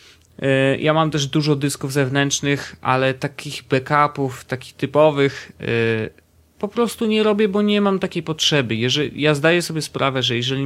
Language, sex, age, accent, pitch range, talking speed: Polish, male, 30-49, native, 115-150 Hz, 145 wpm